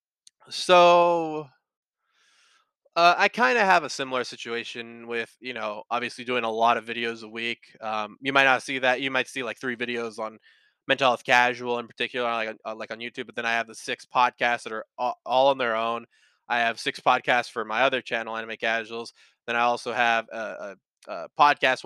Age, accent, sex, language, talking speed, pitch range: 20-39, American, male, English, 200 wpm, 115-145 Hz